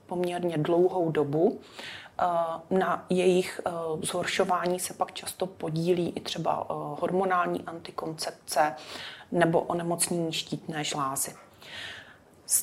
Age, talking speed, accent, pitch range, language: 30-49, 95 wpm, native, 160-185 Hz, Czech